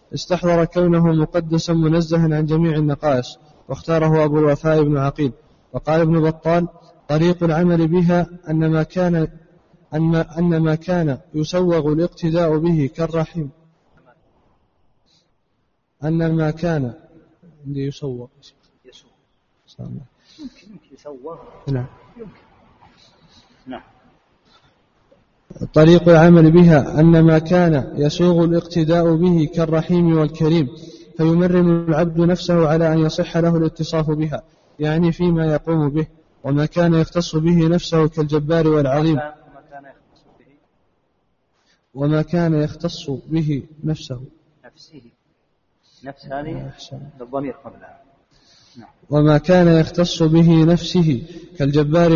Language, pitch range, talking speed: Arabic, 150-170 Hz, 95 wpm